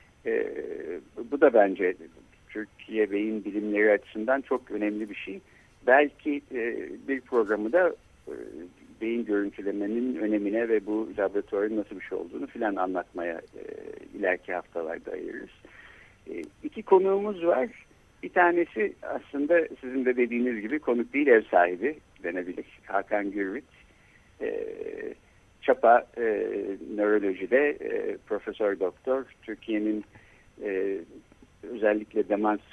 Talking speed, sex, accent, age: 115 wpm, male, native, 60-79